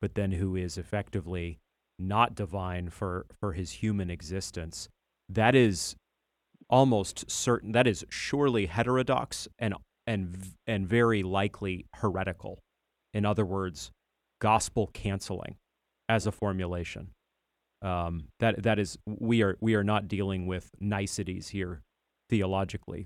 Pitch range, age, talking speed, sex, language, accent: 90-110 Hz, 30-49, 125 wpm, male, English, American